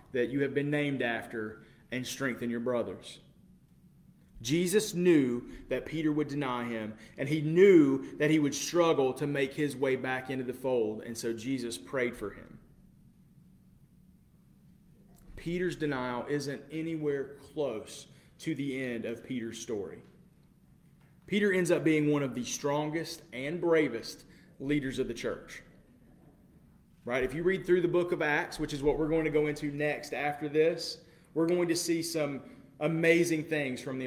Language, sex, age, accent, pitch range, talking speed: English, male, 30-49, American, 130-165 Hz, 160 wpm